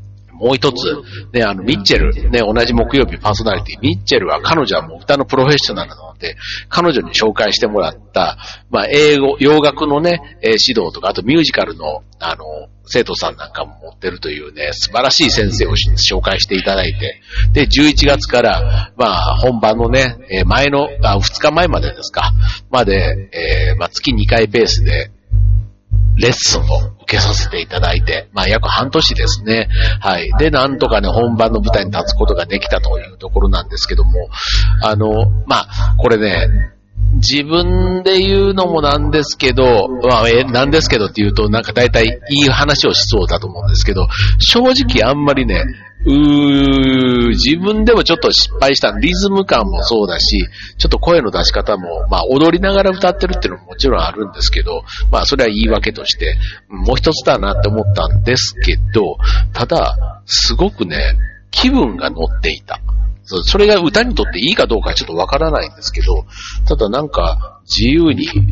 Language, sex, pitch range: Japanese, male, 100-135 Hz